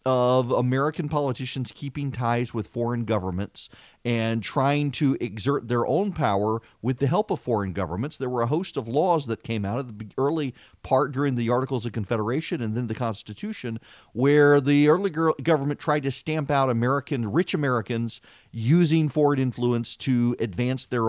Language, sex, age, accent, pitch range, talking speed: English, male, 40-59, American, 110-140 Hz, 170 wpm